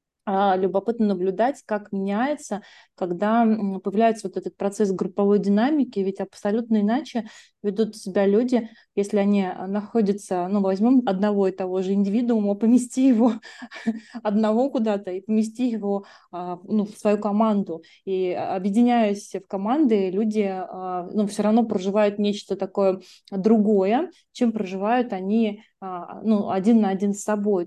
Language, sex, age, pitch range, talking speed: Russian, female, 20-39, 190-220 Hz, 130 wpm